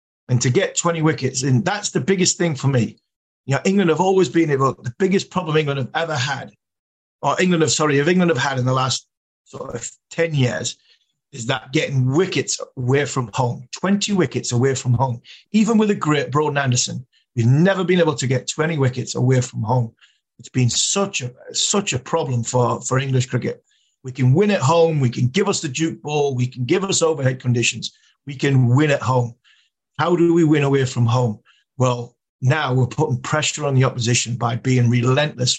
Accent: British